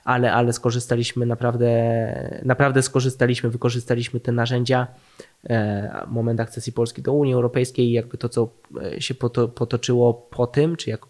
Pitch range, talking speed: 120-130 Hz, 135 wpm